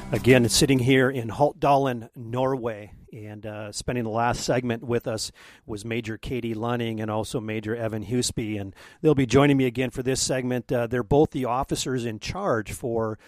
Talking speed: 180 wpm